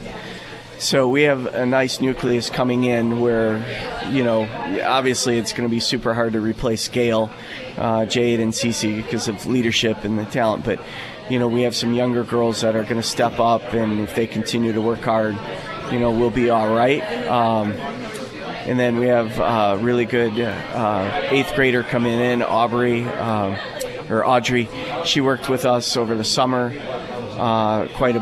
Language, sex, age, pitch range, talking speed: English, male, 30-49, 110-125 Hz, 180 wpm